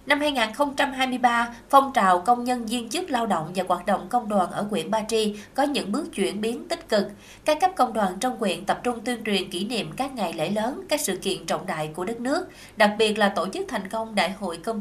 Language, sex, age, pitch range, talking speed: Vietnamese, female, 20-39, 195-245 Hz, 245 wpm